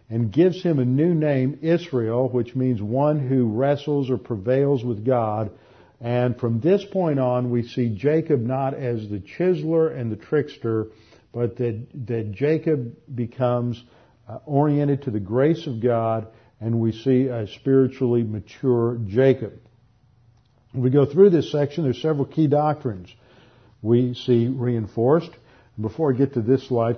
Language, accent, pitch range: English, American, 115-135 Hz